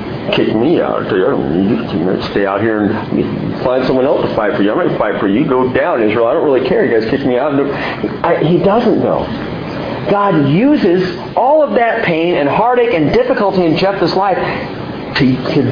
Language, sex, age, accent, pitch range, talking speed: English, male, 40-59, American, 135-195 Hz, 185 wpm